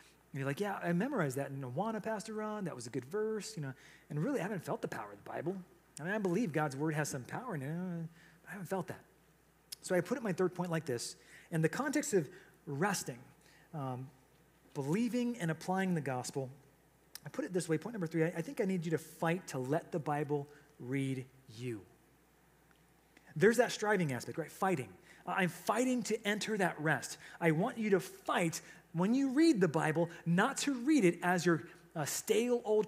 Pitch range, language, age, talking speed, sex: 150-195 Hz, English, 30-49, 210 wpm, male